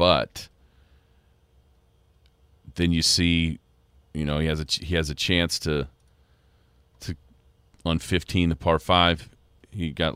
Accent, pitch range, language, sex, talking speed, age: American, 70-85 Hz, English, male, 135 wpm, 40-59